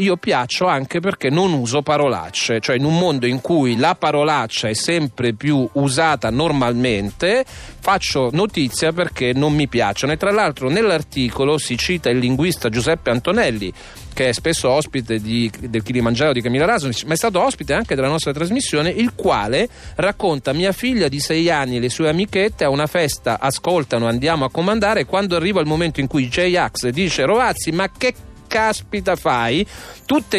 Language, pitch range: Italian, 125-170 Hz